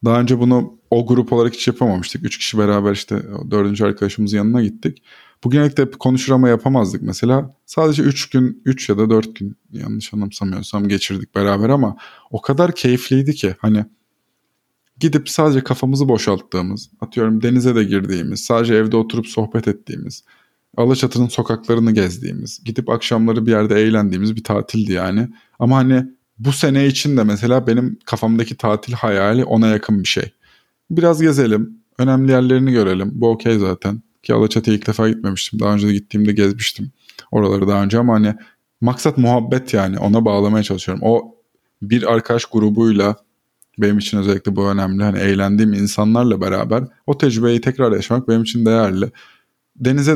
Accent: native